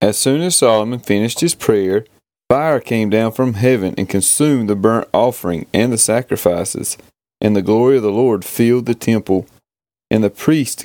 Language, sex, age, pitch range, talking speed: English, male, 30-49, 110-130 Hz, 175 wpm